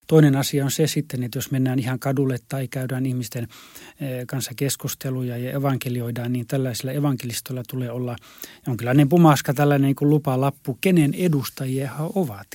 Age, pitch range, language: 30-49, 125-150 Hz, Finnish